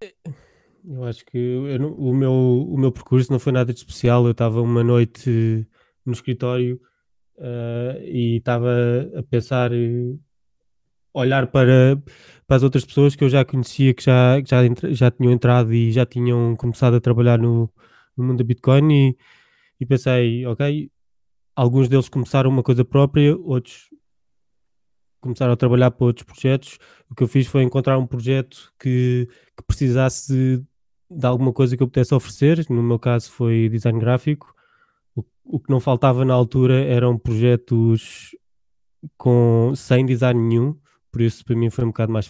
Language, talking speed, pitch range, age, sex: Portuguese, 155 wpm, 120-135 Hz, 20-39, male